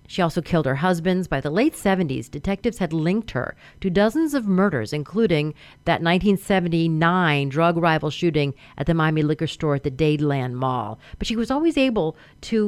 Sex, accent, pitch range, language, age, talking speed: female, American, 155-200 Hz, English, 40-59, 180 wpm